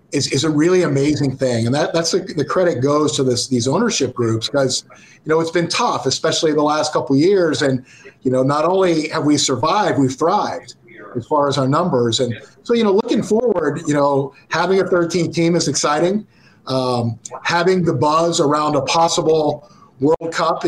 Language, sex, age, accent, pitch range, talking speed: English, male, 50-69, American, 135-170 Hz, 200 wpm